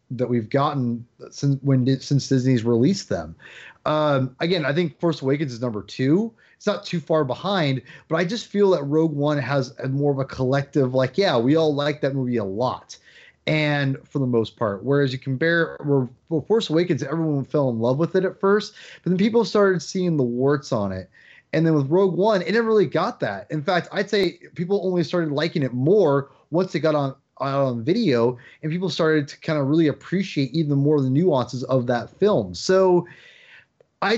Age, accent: 30-49, American